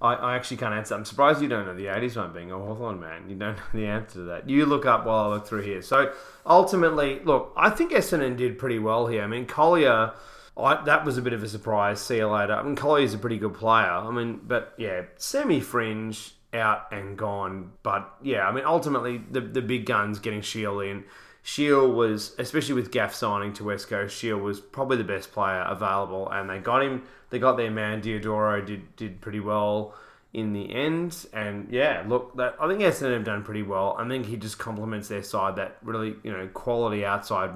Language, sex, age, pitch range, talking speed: English, male, 20-39, 100-125 Hz, 220 wpm